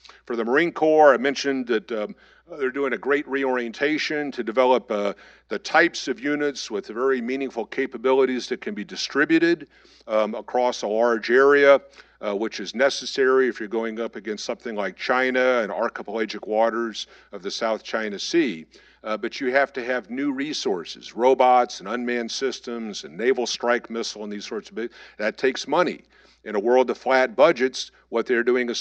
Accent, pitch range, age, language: American, 115-135 Hz, 50-69, English